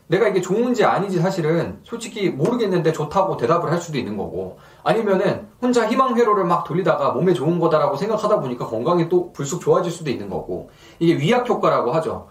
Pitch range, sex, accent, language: 155-205 Hz, male, native, Korean